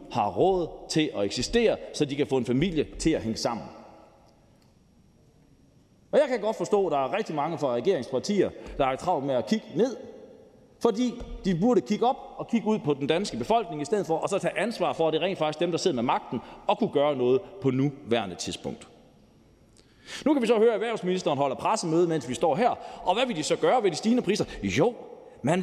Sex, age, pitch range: male, 30-49, 175-240 Hz